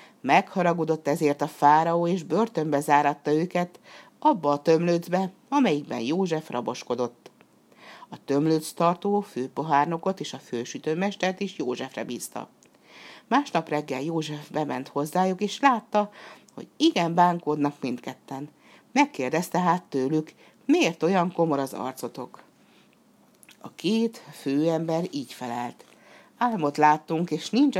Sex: female